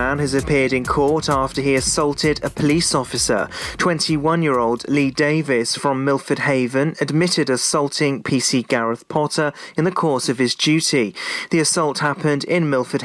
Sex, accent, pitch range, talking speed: male, British, 130-155 Hz, 150 wpm